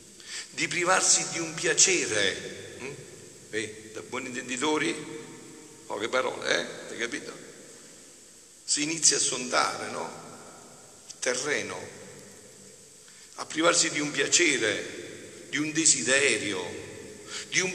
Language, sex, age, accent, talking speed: Italian, male, 50-69, native, 100 wpm